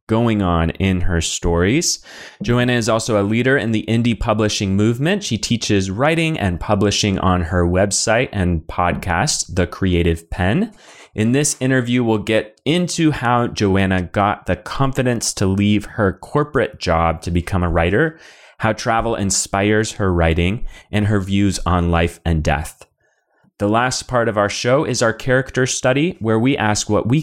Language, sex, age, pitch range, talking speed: English, male, 30-49, 90-125 Hz, 165 wpm